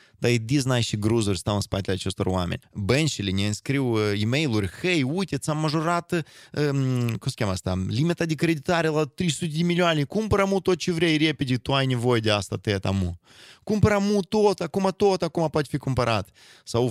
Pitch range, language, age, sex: 105-145 Hz, Romanian, 20-39, male